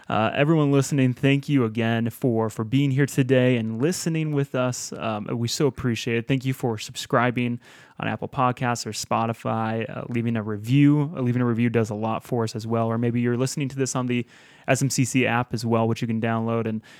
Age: 20-39